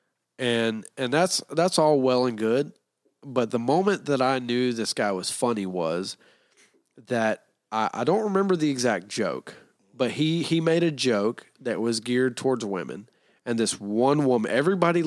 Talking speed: 170 wpm